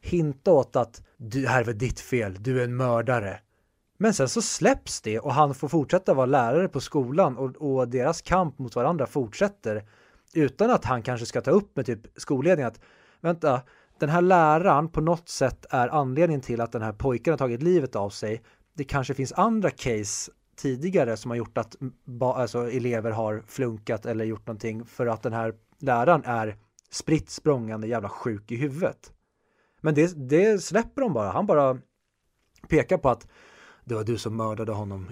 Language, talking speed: Swedish, 180 wpm